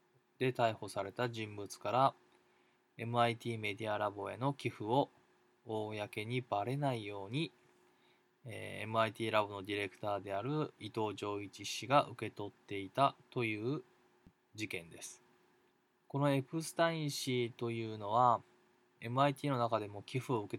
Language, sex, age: Japanese, male, 20-39